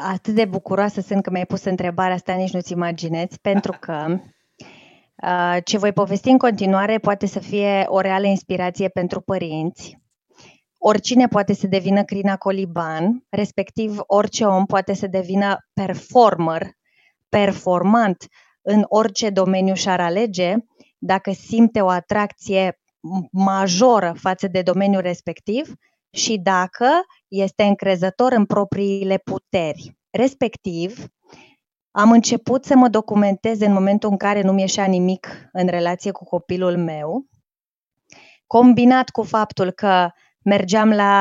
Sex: female